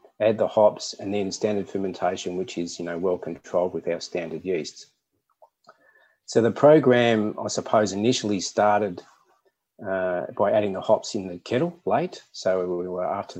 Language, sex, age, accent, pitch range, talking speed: English, male, 30-49, Australian, 90-110 Hz, 165 wpm